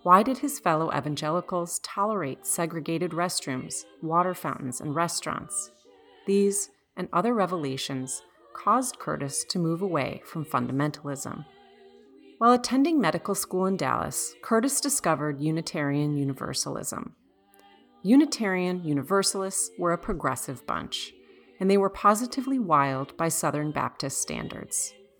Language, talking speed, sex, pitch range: English, 115 wpm, female, 145-200 Hz